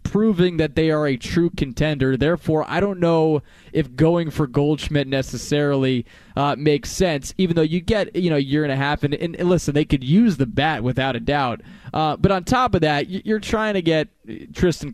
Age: 20-39